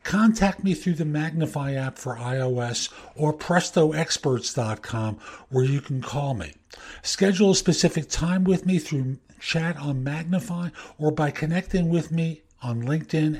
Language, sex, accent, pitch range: English, male, American, 130-170 Hz